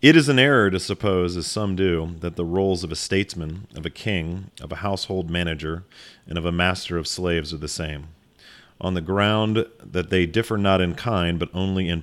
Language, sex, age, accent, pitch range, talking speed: English, male, 40-59, American, 80-95 Hz, 215 wpm